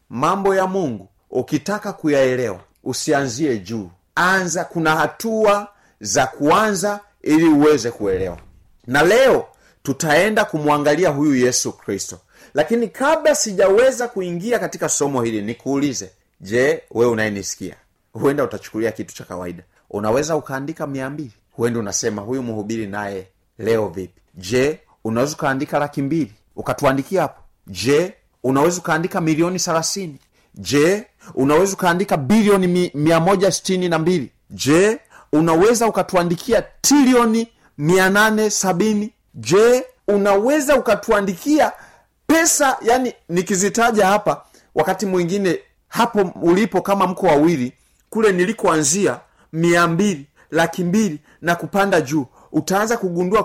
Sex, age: male, 30-49